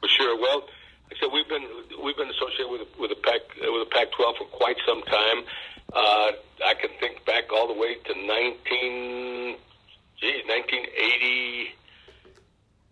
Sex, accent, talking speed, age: male, American, 160 wpm, 50-69